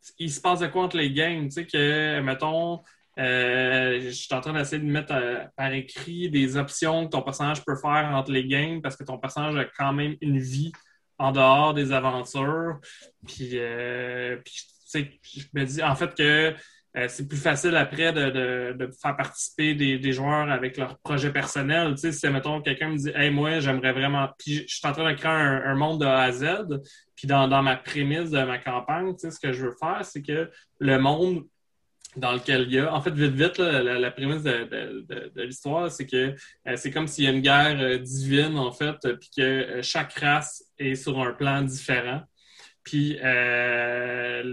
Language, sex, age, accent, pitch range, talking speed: French, male, 20-39, Canadian, 130-150 Hz, 220 wpm